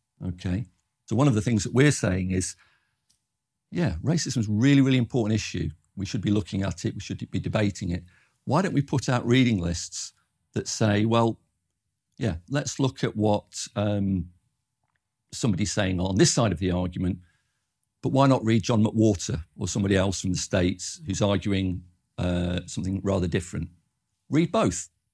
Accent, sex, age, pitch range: British, male, 50-69, 90-115 Hz